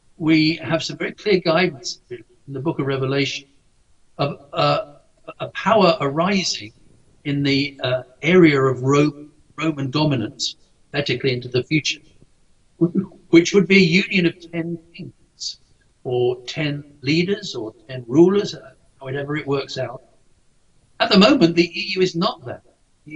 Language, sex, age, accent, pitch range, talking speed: English, male, 60-79, British, 140-170 Hz, 145 wpm